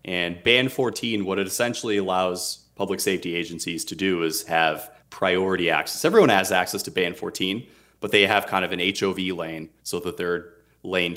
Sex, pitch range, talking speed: male, 85-110 Hz, 185 wpm